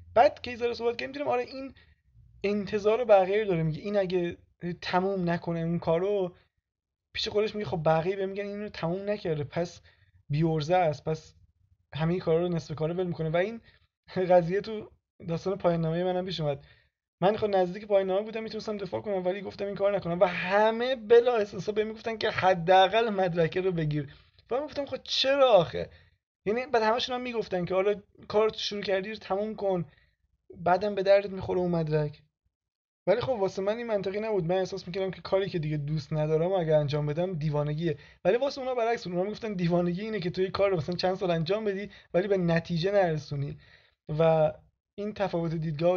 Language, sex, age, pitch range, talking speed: Persian, male, 20-39, 160-205 Hz, 190 wpm